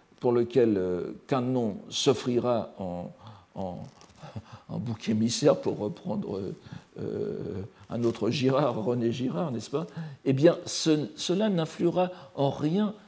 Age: 60-79